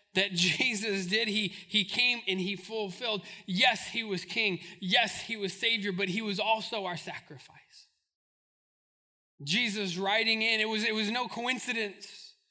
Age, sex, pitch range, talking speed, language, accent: 20-39, male, 190-235 Hz, 155 wpm, English, American